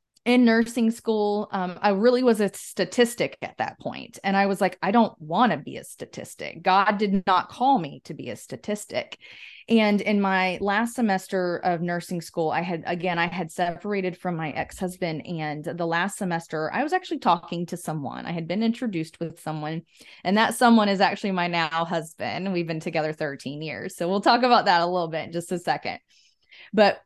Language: English